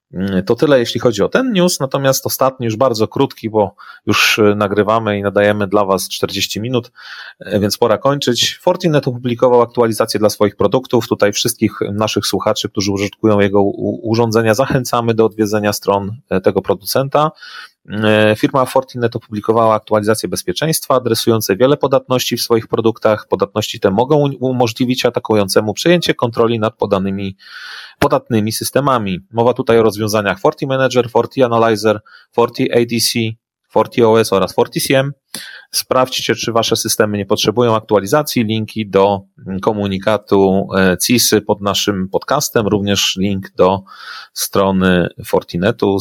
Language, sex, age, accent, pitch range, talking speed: Polish, male, 30-49, native, 105-125 Hz, 125 wpm